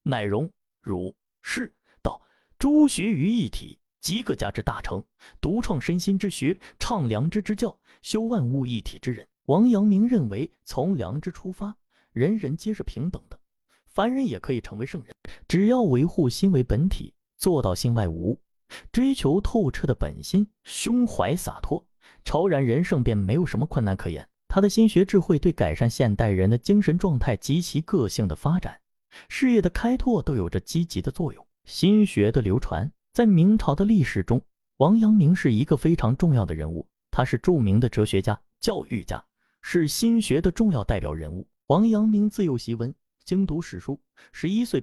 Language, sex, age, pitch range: Chinese, male, 30-49, 120-200 Hz